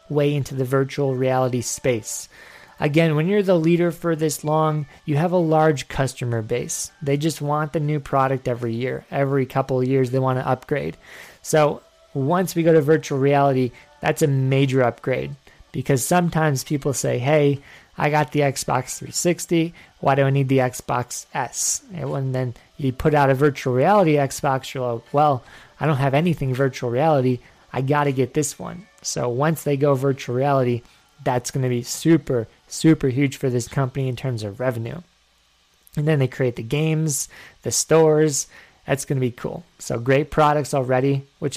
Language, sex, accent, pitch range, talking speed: English, male, American, 130-160 Hz, 180 wpm